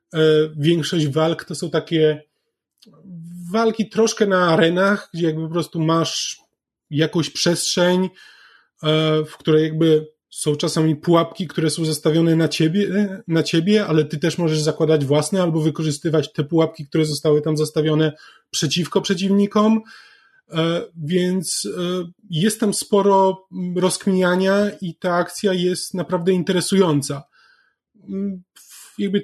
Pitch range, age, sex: 165-195 Hz, 20-39, male